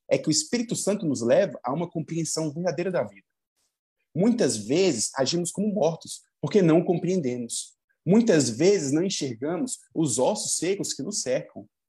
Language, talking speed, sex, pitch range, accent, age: Portuguese, 155 wpm, male, 130-190 Hz, Brazilian, 20-39